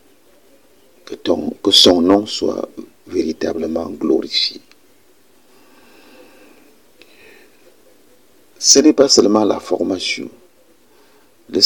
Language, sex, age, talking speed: French, male, 50-69, 75 wpm